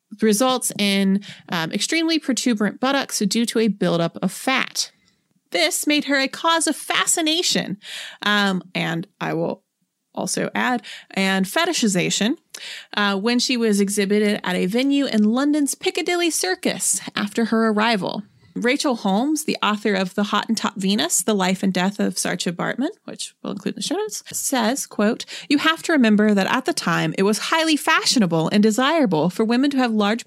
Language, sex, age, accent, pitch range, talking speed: English, female, 30-49, American, 205-275 Hz, 175 wpm